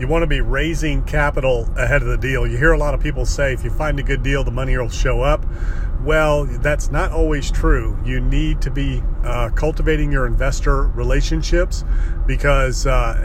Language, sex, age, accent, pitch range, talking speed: English, male, 40-59, American, 120-140 Hz, 195 wpm